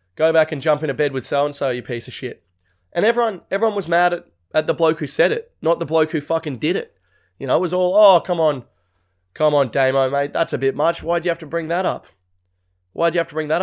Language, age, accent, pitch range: English, 20-39, Australian, 105-165 Hz